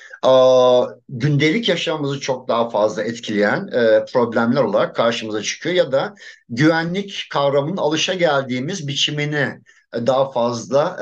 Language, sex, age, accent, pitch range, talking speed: Turkish, male, 50-69, native, 130-190 Hz, 100 wpm